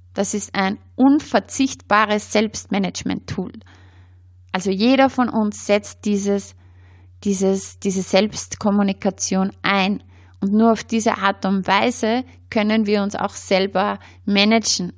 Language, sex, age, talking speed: German, female, 20-39, 110 wpm